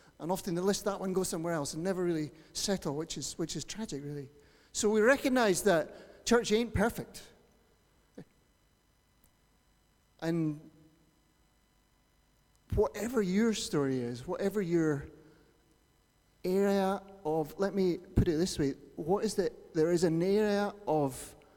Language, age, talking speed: English, 30-49, 135 wpm